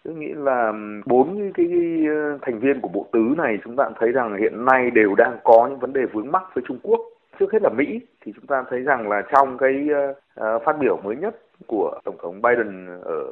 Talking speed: 220 wpm